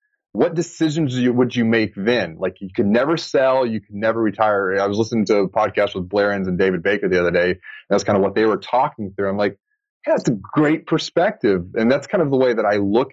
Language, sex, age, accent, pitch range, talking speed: English, male, 30-49, American, 95-130 Hz, 245 wpm